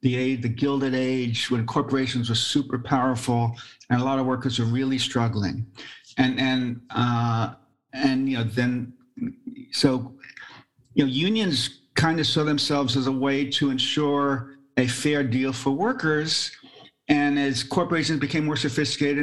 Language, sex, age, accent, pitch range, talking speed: English, male, 50-69, American, 130-145 Hz, 150 wpm